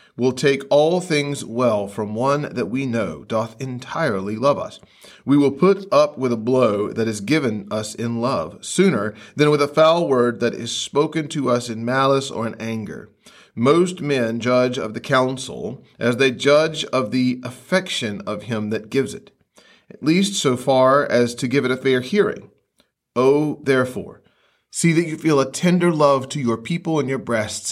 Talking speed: 185 wpm